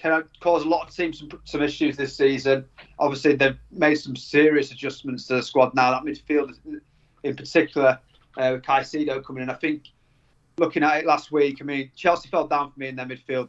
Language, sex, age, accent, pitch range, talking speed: English, male, 30-49, British, 130-150 Hz, 210 wpm